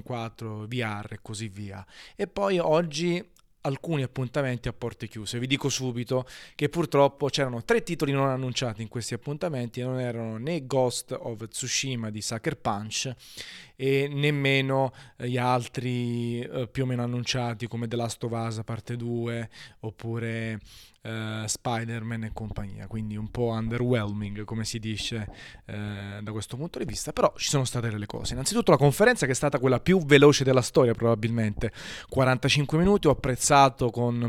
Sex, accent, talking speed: male, native, 160 wpm